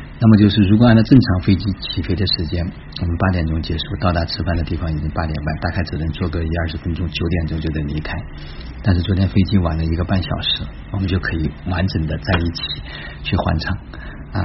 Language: Chinese